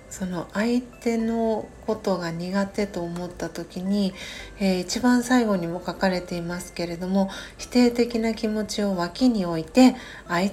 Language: Japanese